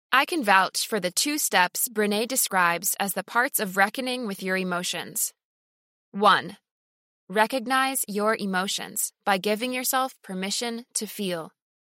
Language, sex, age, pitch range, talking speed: English, female, 20-39, 190-255 Hz, 135 wpm